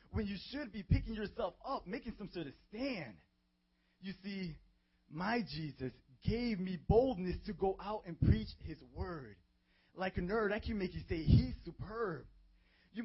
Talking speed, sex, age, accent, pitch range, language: 170 wpm, male, 20-39, American, 140-210 Hz, English